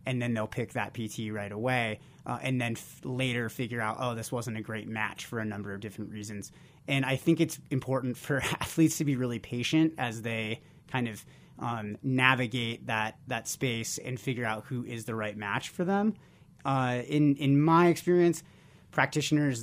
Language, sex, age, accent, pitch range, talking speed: English, male, 30-49, American, 115-140 Hz, 195 wpm